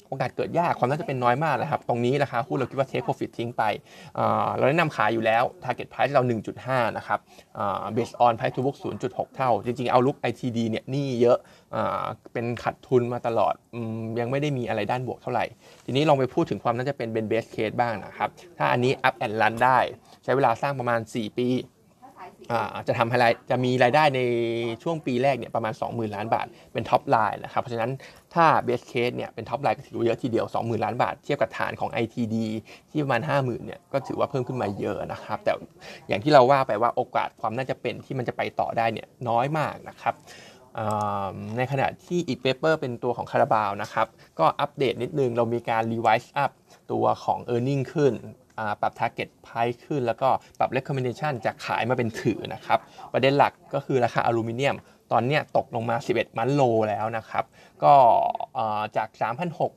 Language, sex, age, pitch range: Thai, male, 20-39, 115-135 Hz